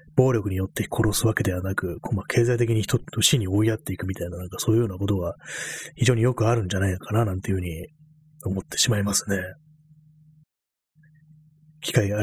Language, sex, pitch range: Japanese, male, 95-150 Hz